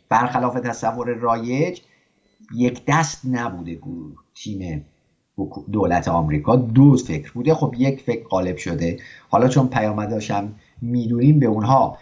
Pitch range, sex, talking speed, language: 110-145 Hz, male, 115 wpm, English